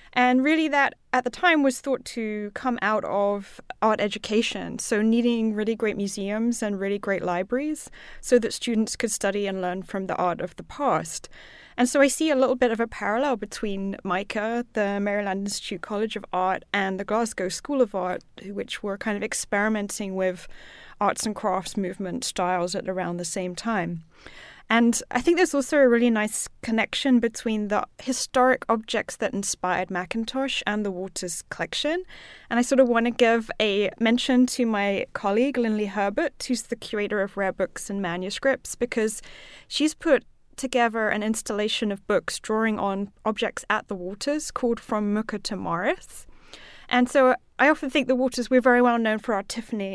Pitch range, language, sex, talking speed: 200-250 Hz, English, female, 180 wpm